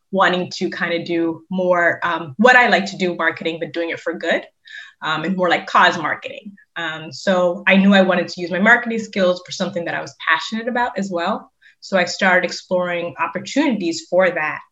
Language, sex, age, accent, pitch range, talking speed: English, female, 20-39, American, 170-210 Hz, 210 wpm